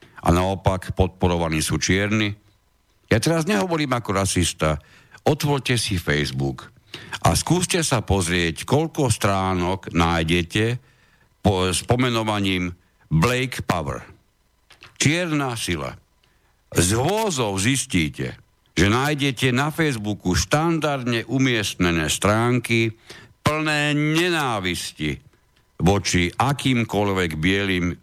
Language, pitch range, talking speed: Slovak, 90-130 Hz, 90 wpm